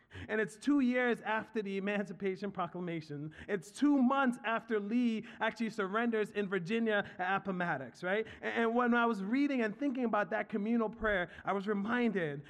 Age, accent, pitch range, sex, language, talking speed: 30-49, American, 205-240 Hz, male, English, 170 wpm